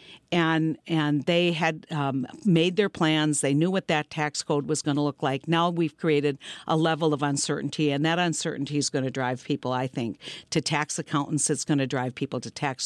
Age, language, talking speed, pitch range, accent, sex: 50-69, English, 215 wpm, 145-180 Hz, American, female